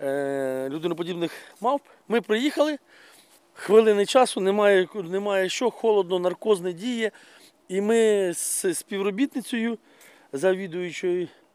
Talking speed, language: 95 wpm, Ukrainian